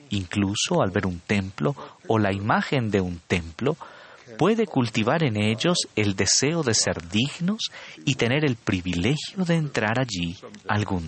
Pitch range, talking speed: 95-140 Hz, 150 wpm